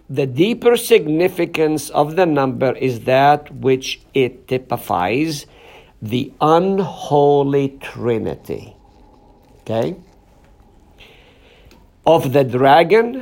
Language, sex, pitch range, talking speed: English, male, 120-175 Hz, 80 wpm